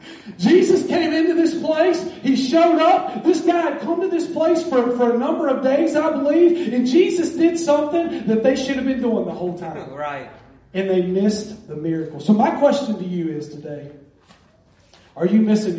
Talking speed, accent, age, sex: 200 wpm, American, 40-59, male